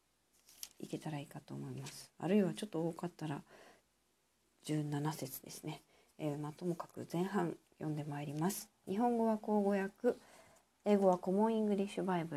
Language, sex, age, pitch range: Japanese, female, 50-69, 165-220 Hz